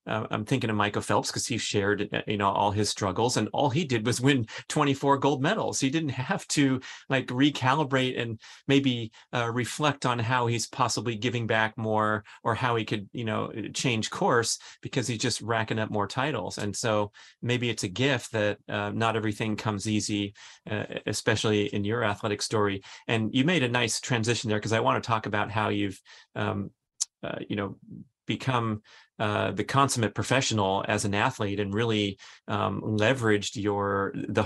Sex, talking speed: male, 185 wpm